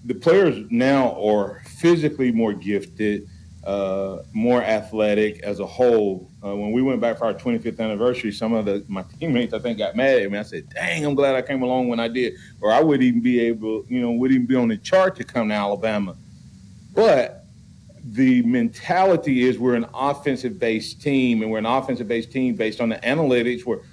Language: English